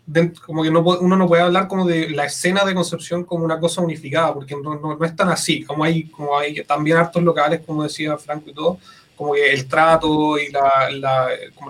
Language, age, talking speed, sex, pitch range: Spanish, 30-49, 220 wpm, male, 150-170 Hz